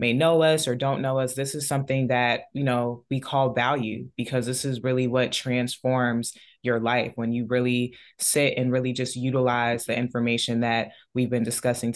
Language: English